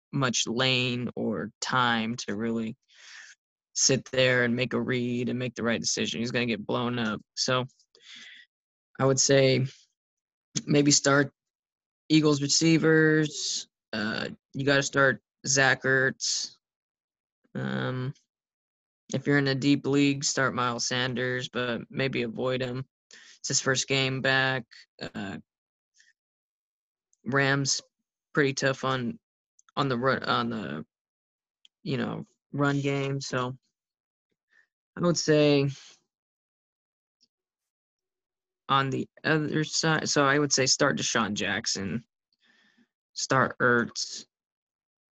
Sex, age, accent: male, 20-39, American